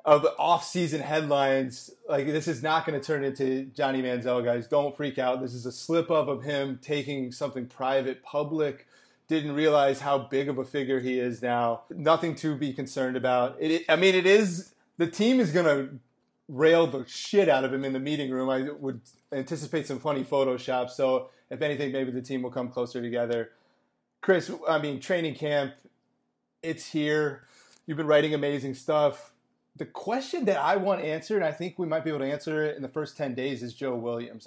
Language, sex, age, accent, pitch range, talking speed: English, male, 30-49, American, 130-155 Hz, 195 wpm